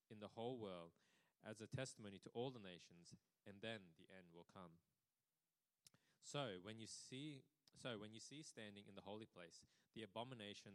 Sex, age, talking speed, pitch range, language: male, 20-39, 180 wpm, 100-125 Hz, English